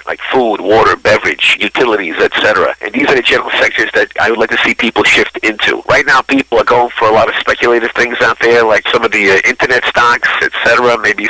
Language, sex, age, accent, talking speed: English, male, 50-69, American, 230 wpm